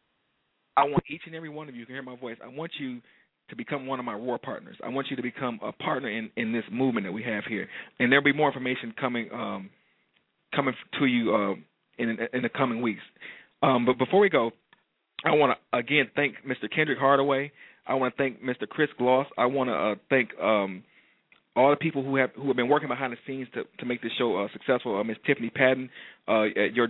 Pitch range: 120-135 Hz